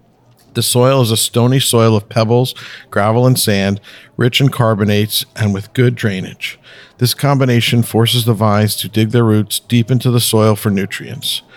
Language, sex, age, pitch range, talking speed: English, male, 50-69, 105-120 Hz, 170 wpm